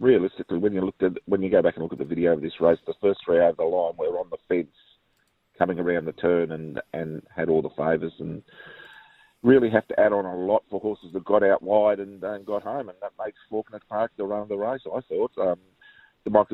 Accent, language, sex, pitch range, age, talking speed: Australian, English, male, 85-105 Hz, 40-59, 250 wpm